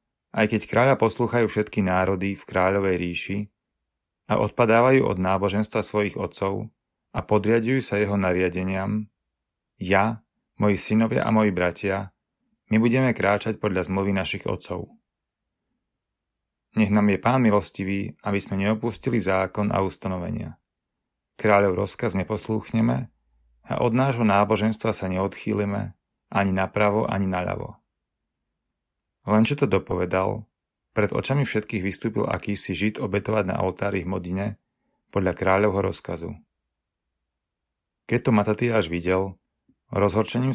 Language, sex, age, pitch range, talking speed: Slovak, male, 30-49, 90-110 Hz, 120 wpm